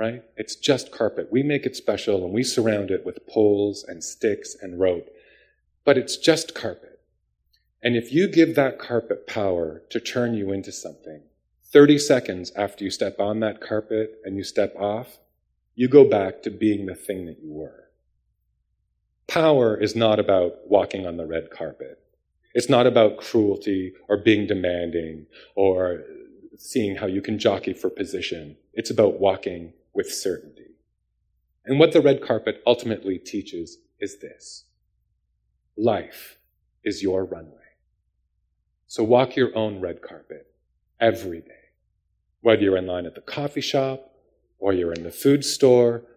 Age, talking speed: 30-49, 155 wpm